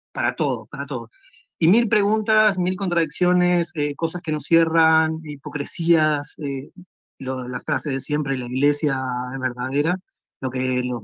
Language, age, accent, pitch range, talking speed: Spanish, 30-49, Argentinian, 130-170 Hz, 145 wpm